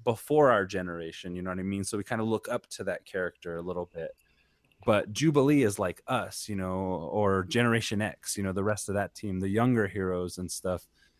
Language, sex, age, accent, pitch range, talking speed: English, male, 20-39, American, 95-115 Hz, 225 wpm